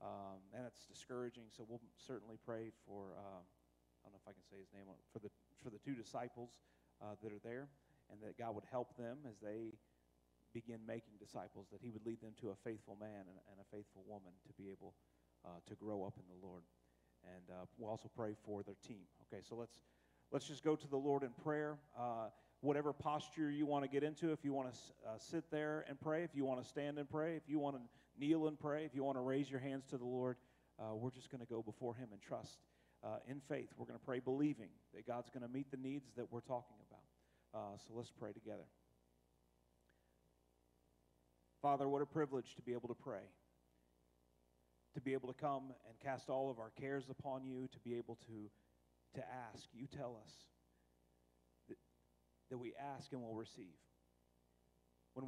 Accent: American